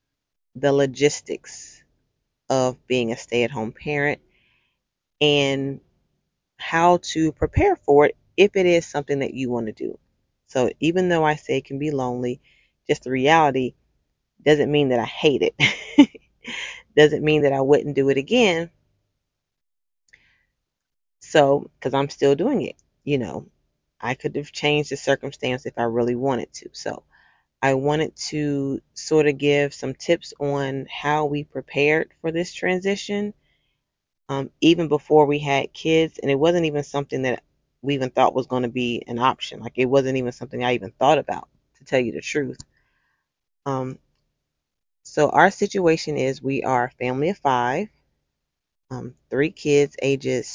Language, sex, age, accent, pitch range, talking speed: English, female, 30-49, American, 130-150 Hz, 160 wpm